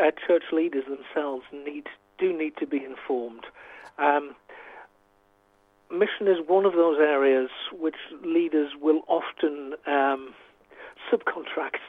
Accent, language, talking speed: British, English, 115 wpm